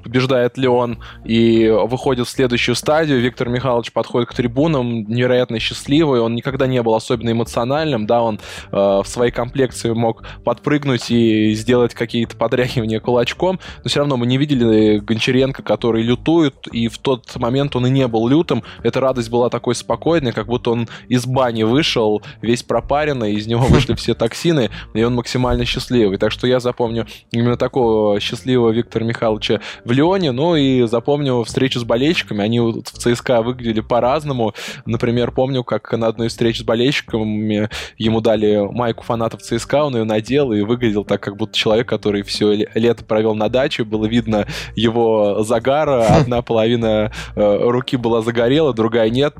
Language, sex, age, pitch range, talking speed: Russian, male, 20-39, 115-130 Hz, 165 wpm